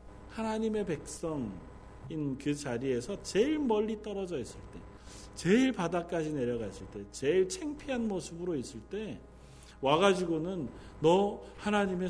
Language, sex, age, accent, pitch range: Korean, male, 40-59, native, 130-215 Hz